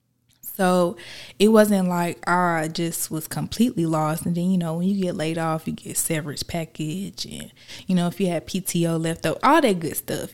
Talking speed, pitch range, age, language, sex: 205 wpm, 160-190 Hz, 20-39, English, female